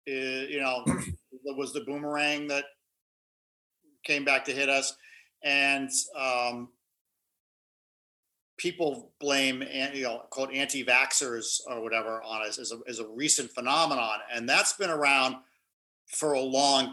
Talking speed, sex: 135 wpm, male